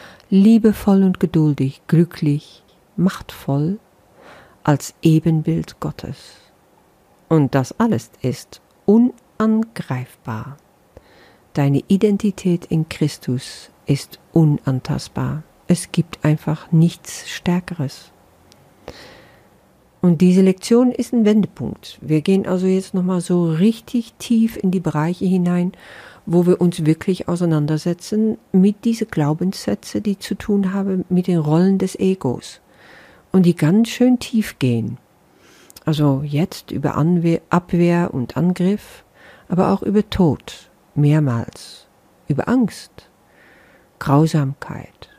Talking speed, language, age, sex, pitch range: 105 wpm, German, 50-69, female, 155-195 Hz